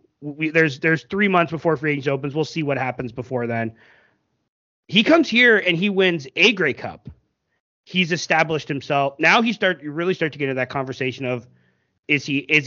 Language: English